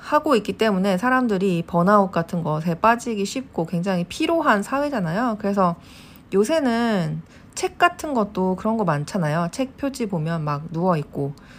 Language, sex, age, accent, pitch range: Korean, female, 40-59, native, 165-215 Hz